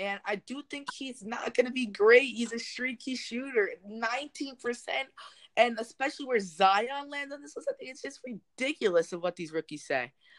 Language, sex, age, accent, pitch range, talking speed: English, female, 20-39, American, 160-230 Hz, 190 wpm